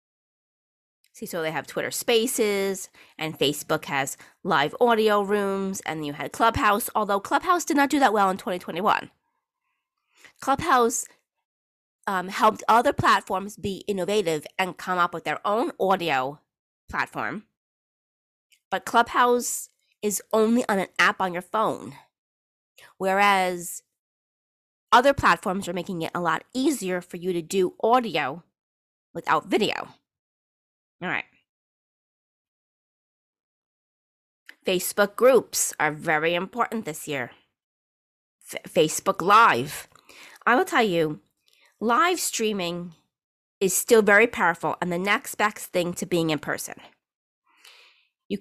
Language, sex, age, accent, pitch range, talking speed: English, female, 30-49, American, 170-225 Hz, 120 wpm